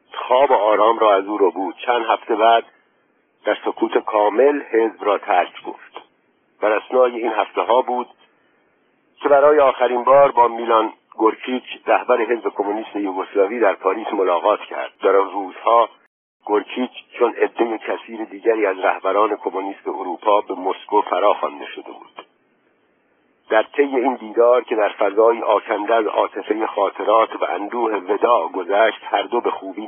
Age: 50-69